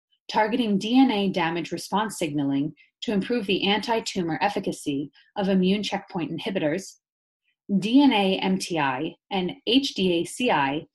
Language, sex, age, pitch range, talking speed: English, female, 30-49, 165-230 Hz, 100 wpm